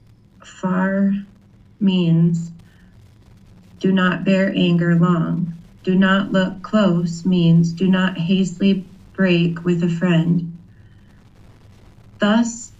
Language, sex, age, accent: English, female, 30-49, American